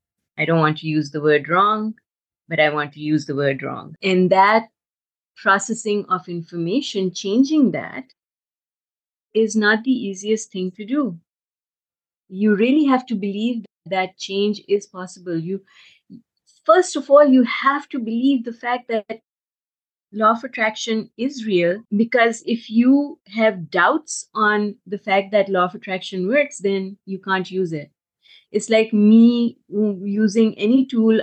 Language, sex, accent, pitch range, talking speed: English, female, Indian, 185-220 Hz, 150 wpm